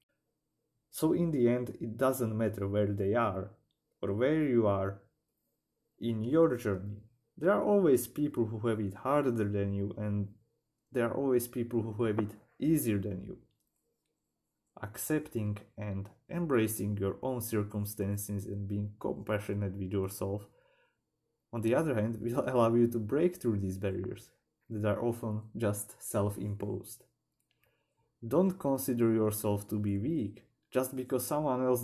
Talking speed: 145 wpm